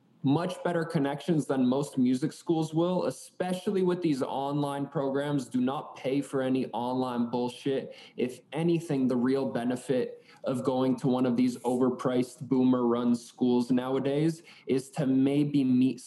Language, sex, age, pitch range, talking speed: English, male, 20-39, 125-165 Hz, 150 wpm